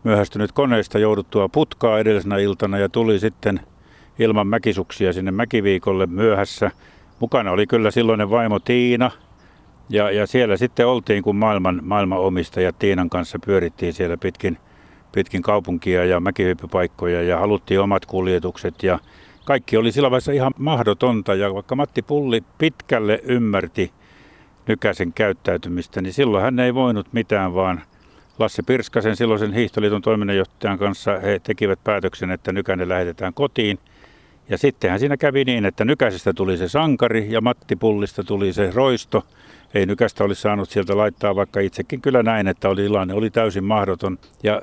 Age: 60-79